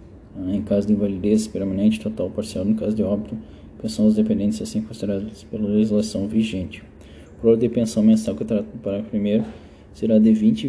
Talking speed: 190 wpm